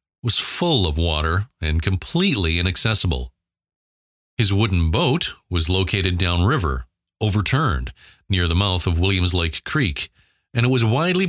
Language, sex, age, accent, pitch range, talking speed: English, male, 40-59, American, 85-135 Hz, 135 wpm